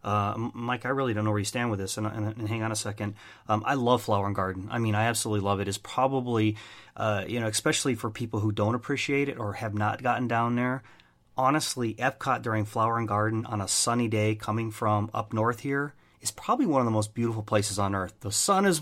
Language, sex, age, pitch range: English, male, 30-49, 105-135 Hz